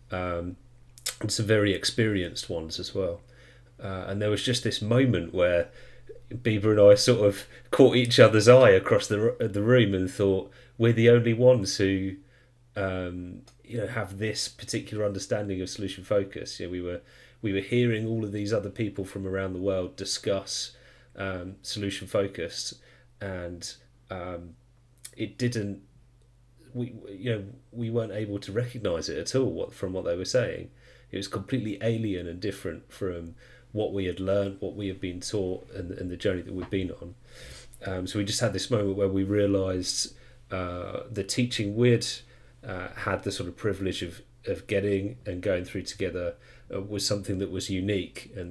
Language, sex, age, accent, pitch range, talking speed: English, male, 30-49, British, 95-120 Hz, 175 wpm